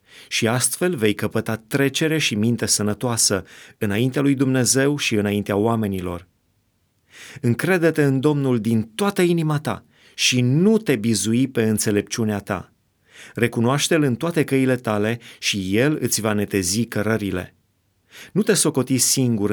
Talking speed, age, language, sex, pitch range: 135 wpm, 30-49, Romanian, male, 105-135 Hz